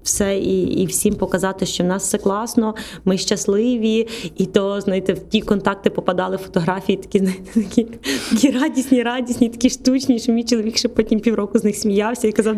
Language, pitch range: Ukrainian, 185-225 Hz